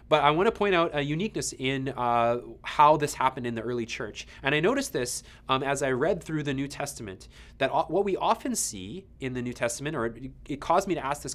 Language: English